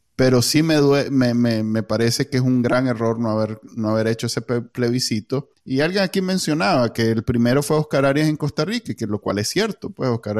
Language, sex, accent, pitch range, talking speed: Spanish, male, Venezuelan, 110-135 Hz, 235 wpm